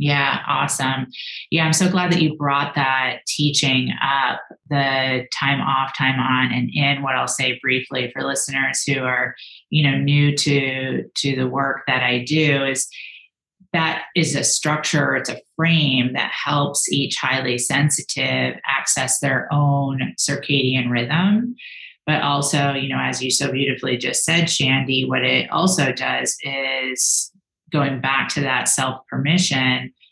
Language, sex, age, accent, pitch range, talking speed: English, female, 30-49, American, 130-160 Hz, 155 wpm